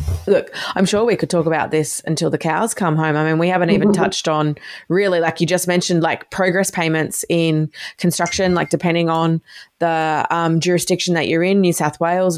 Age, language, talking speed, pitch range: 20-39, English, 205 wpm, 160-190 Hz